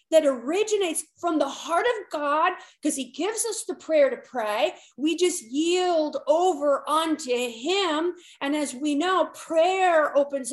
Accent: American